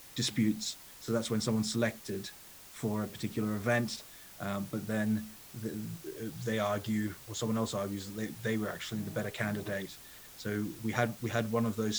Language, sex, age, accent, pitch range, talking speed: English, male, 30-49, British, 105-115 Hz, 180 wpm